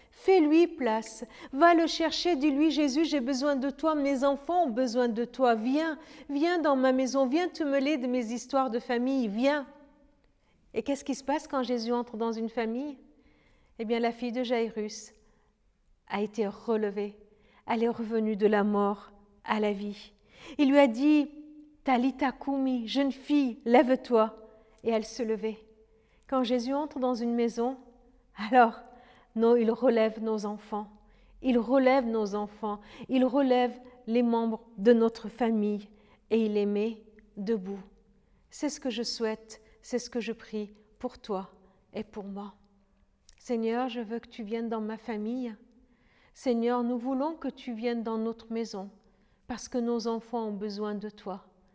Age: 50-69